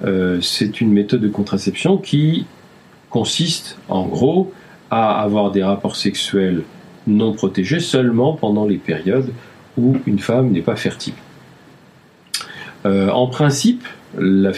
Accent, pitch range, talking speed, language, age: French, 95-125 Hz, 130 wpm, French, 50-69